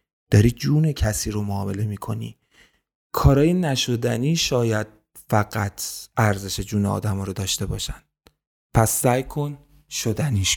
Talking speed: 120 wpm